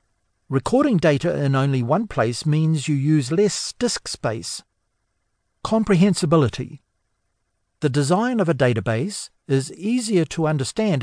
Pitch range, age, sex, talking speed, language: 110-175 Hz, 60-79, male, 120 wpm, English